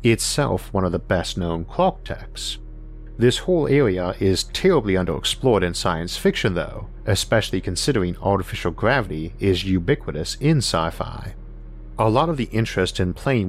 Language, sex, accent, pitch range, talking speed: English, male, American, 90-120 Hz, 140 wpm